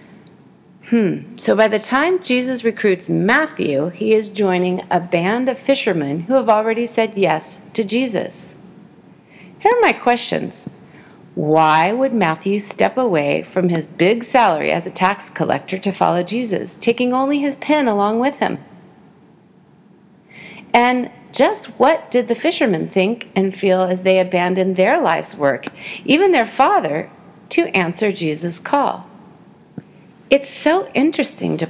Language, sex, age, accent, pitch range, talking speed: English, female, 40-59, American, 185-245 Hz, 140 wpm